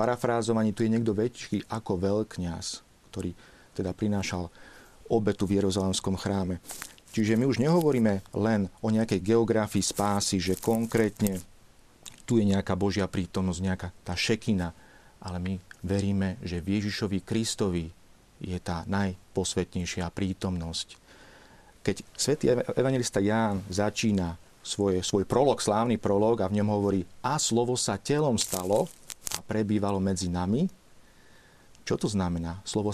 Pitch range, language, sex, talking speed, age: 95-110 Hz, Slovak, male, 125 wpm, 40-59